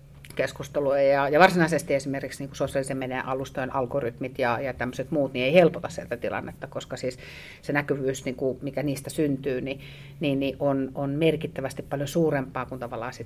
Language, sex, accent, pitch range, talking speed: Finnish, female, native, 125-150 Hz, 175 wpm